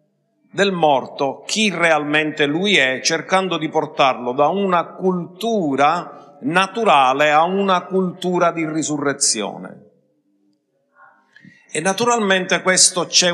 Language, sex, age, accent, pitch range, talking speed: Italian, male, 50-69, native, 145-195 Hz, 100 wpm